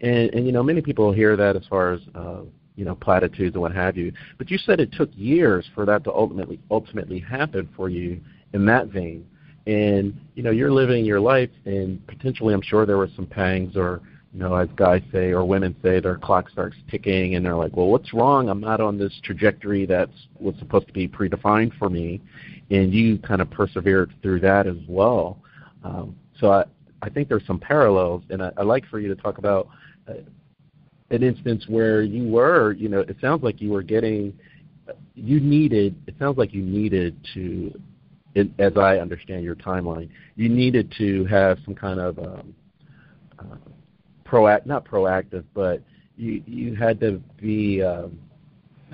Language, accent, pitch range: English, American, 95-115 Hz